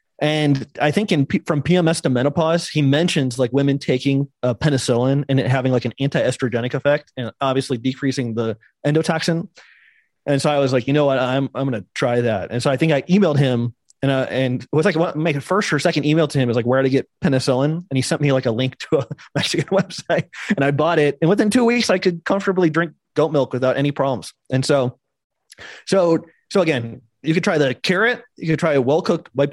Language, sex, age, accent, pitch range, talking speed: English, male, 30-49, American, 130-160 Hz, 235 wpm